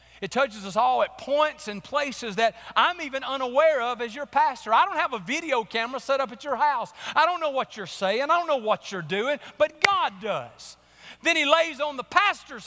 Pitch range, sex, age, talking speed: 190-275 Hz, male, 40-59, 225 wpm